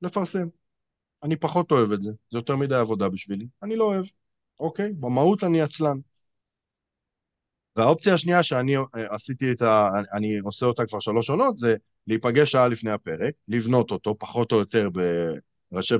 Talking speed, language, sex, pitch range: 145 wpm, Hebrew, male, 105-145 Hz